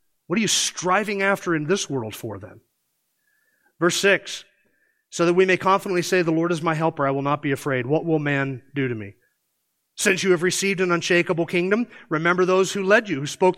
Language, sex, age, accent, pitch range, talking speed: English, male, 40-59, American, 160-205 Hz, 210 wpm